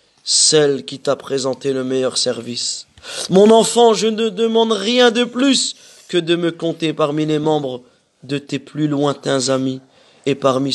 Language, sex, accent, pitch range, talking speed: French, male, French, 125-145 Hz, 160 wpm